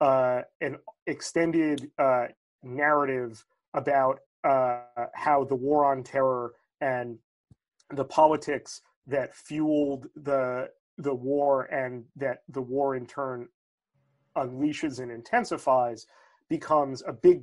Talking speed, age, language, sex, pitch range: 110 wpm, 30-49, English, male, 125-150 Hz